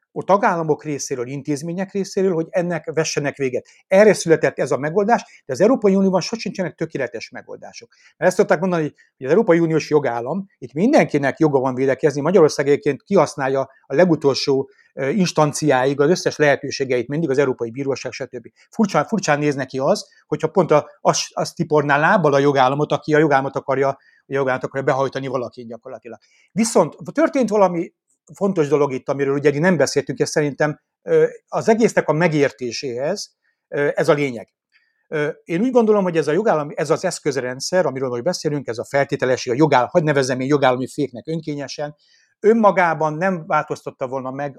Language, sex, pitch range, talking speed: Hungarian, male, 135-185 Hz, 160 wpm